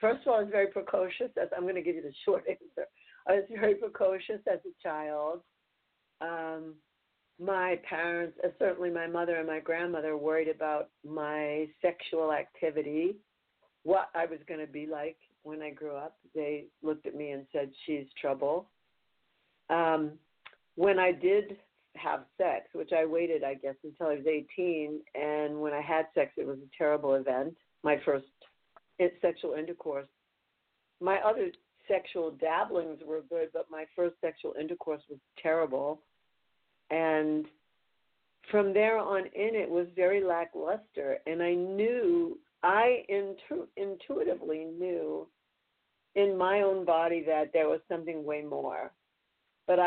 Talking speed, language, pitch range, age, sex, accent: 150 wpm, English, 155-190 Hz, 60-79, female, American